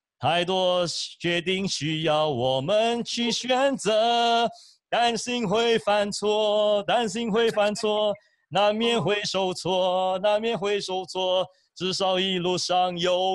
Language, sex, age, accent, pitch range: English, male, 40-59, Chinese, 185-230 Hz